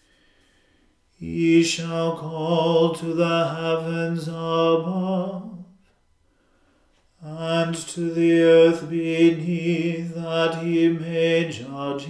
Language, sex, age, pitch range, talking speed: English, male, 40-59, 165-170 Hz, 80 wpm